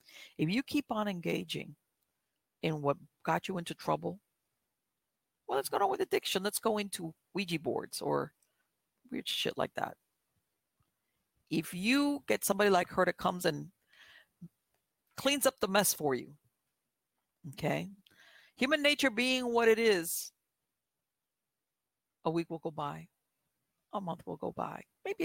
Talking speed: 145 wpm